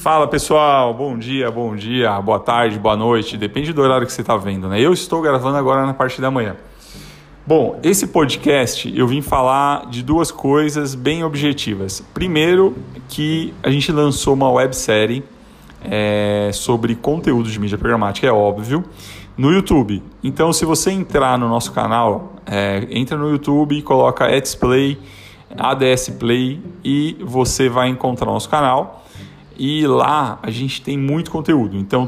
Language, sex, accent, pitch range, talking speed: Portuguese, male, Brazilian, 115-145 Hz, 160 wpm